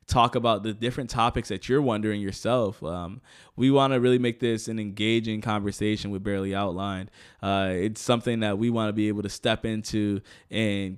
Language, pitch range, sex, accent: English, 100-115 Hz, male, American